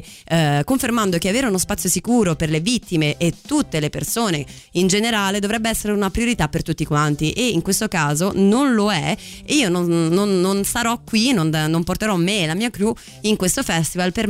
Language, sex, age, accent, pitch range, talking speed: Italian, female, 30-49, native, 165-220 Hz, 200 wpm